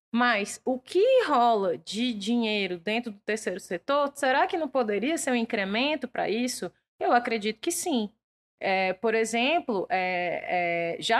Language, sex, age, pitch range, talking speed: Portuguese, female, 20-39, 200-270 Hz, 140 wpm